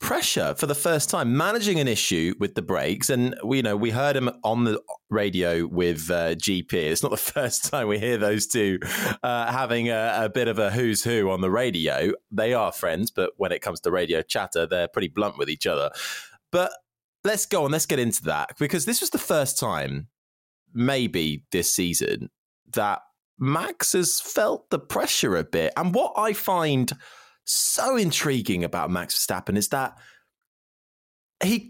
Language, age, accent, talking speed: English, 20-39, British, 185 wpm